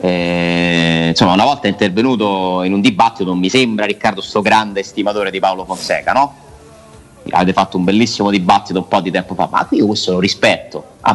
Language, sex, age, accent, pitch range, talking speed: Italian, male, 30-49, native, 85-120 Hz, 190 wpm